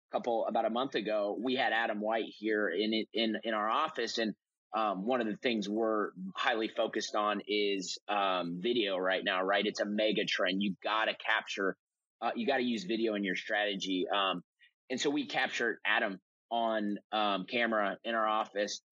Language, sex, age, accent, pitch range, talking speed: English, male, 30-49, American, 105-130 Hz, 185 wpm